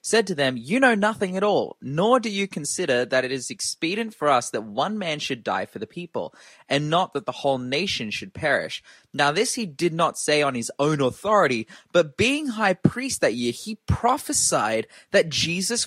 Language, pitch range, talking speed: English, 130-185 Hz, 205 wpm